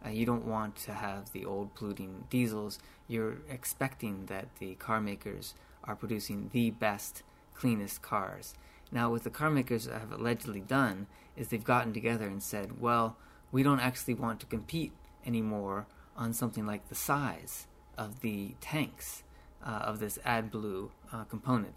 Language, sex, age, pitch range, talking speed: English, male, 20-39, 105-120 Hz, 165 wpm